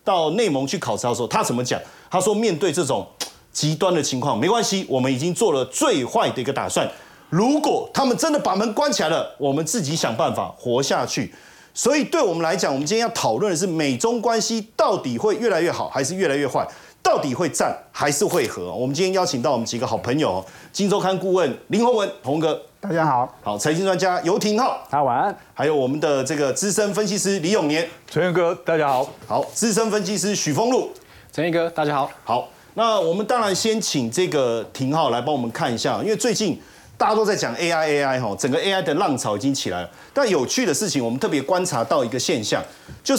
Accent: native